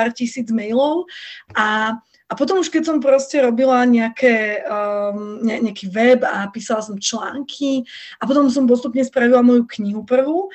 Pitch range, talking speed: 220-270 Hz, 155 wpm